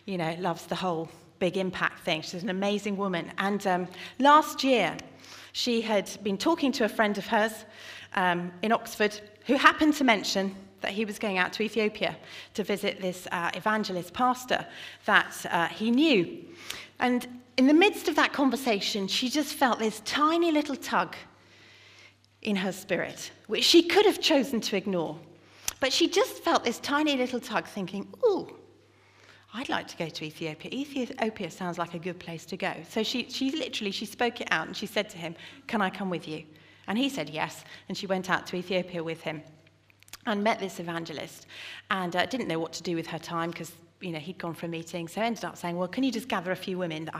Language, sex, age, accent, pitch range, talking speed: English, female, 40-59, British, 170-230 Hz, 205 wpm